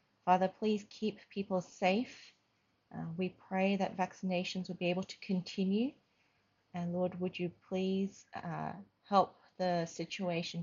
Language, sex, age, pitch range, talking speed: English, female, 30-49, 165-195 Hz, 135 wpm